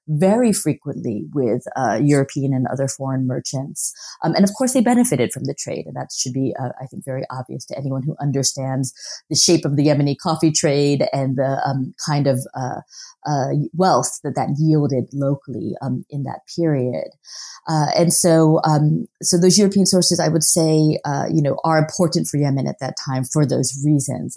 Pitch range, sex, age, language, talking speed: 135-175 Hz, female, 30-49, English, 190 wpm